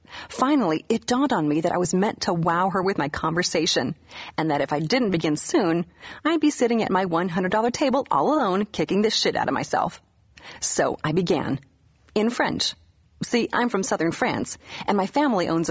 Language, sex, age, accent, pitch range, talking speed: English, female, 30-49, American, 160-235 Hz, 195 wpm